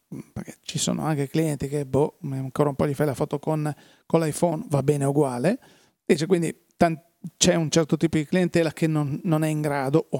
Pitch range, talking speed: 140-165 Hz, 210 wpm